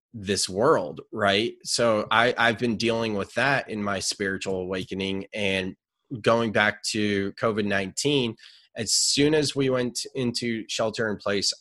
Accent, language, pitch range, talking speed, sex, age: American, English, 95-110 Hz, 145 wpm, male, 20-39